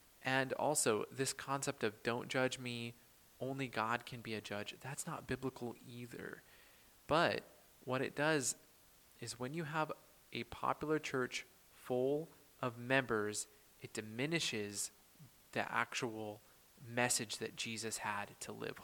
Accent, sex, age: American, male, 20-39